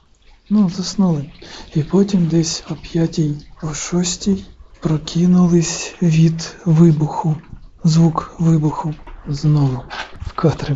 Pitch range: 145-170 Hz